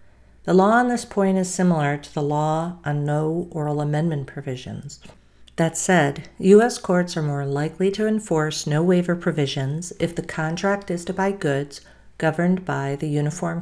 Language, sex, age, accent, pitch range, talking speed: English, female, 50-69, American, 140-180 Hz, 165 wpm